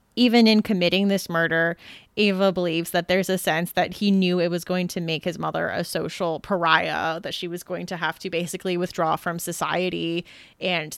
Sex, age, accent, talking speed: female, 20-39, American, 195 wpm